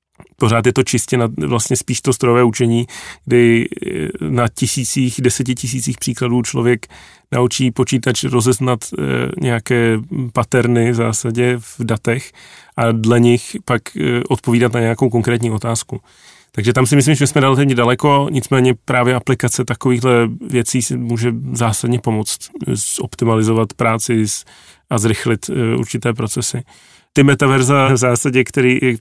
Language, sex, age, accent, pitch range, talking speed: Czech, male, 30-49, native, 120-130 Hz, 130 wpm